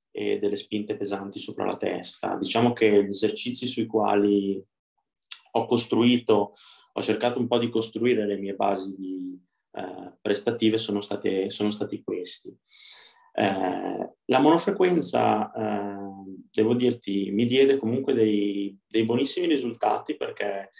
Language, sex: Italian, male